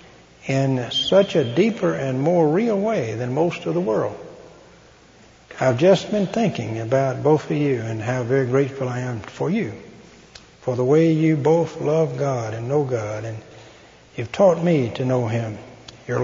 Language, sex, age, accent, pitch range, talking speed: English, male, 60-79, American, 120-155 Hz, 175 wpm